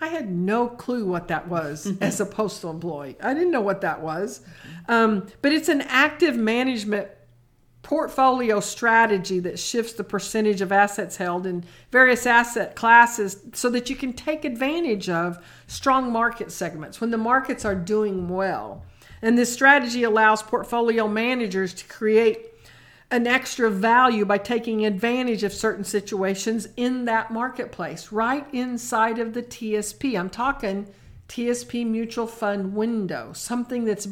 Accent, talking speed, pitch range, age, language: American, 150 wpm, 195-245 Hz, 50-69, English